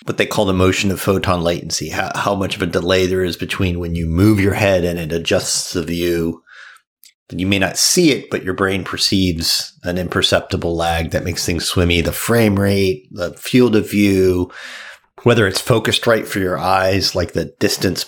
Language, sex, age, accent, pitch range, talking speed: English, male, 40-59, American, 90-105 Hz, 195 wpm